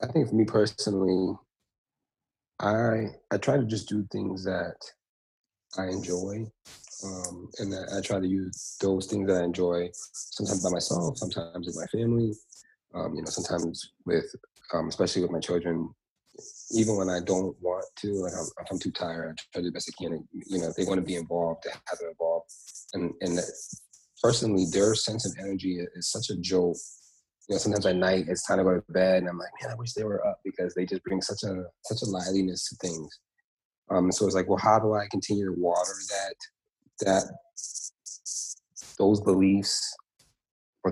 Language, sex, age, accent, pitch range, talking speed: English, male, 30-49, American, 90-105 Hz, 195 wpm